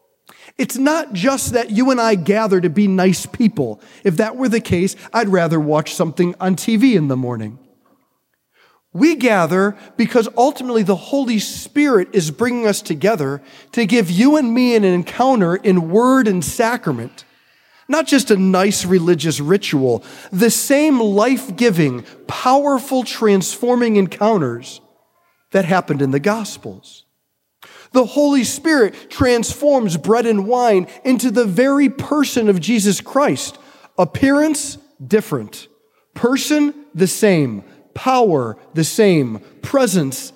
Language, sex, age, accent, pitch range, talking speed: English, male, 40-59, American, 175-250 Hz, 130 wpm